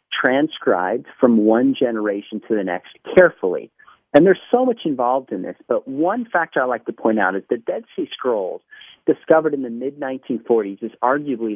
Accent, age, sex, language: American, 40-59, male, English